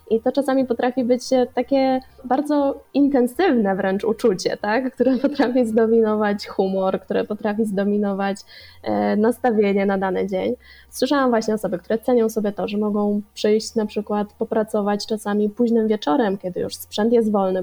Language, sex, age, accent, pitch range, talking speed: Polish, female, 20-39, native, 195-230 Hz, 145 wpm